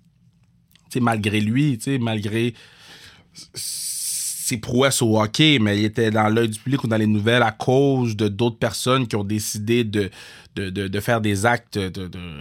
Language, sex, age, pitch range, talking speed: French, male, 20-39, 105-125 Hz, 175 wpm